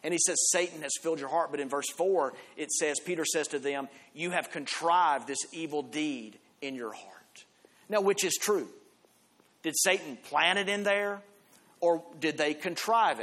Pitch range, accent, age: 150-180 Hz, American, 40-59